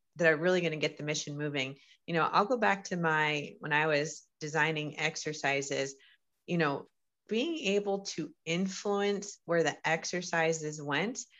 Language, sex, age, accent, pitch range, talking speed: English, female, 30-49, American, 150-195 Hz, 160 wpm